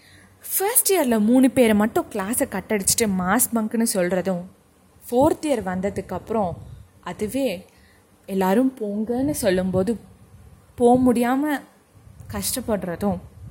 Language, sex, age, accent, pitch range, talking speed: Tamil, female, 20-39, native, 180-245 Hz, 90 wpm